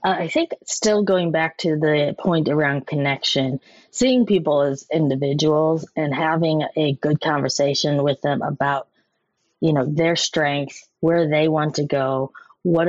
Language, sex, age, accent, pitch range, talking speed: English, female, 30-49, American, 145-185 Hz, 155 wpm